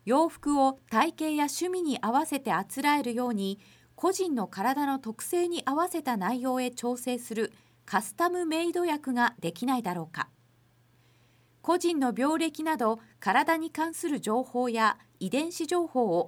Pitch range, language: 220-300 Hz, Japanese